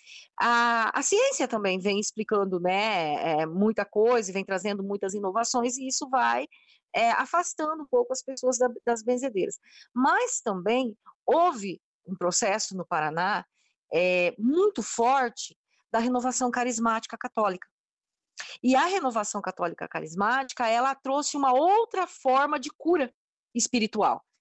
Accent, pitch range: Brazilian, 205-265 Hz